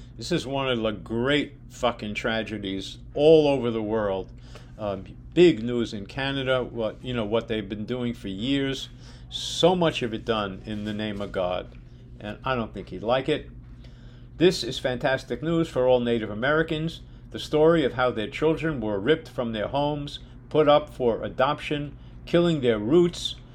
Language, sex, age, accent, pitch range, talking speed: English, male, 50-69, American, 120-150 Hz, 175 wpm